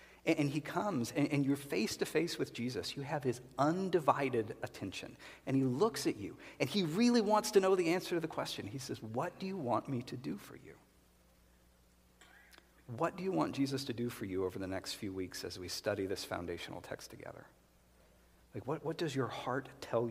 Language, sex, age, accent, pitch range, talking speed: English, male, 50-69, American, 110-145 Hz, 205 wpm